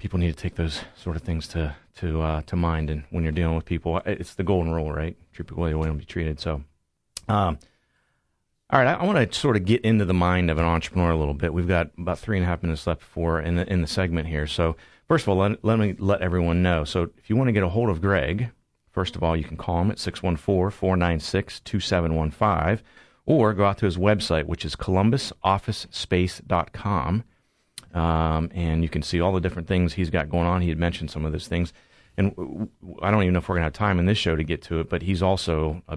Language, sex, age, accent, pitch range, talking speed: English, male, 40-59, American, 80-95 Hz, 250 wpm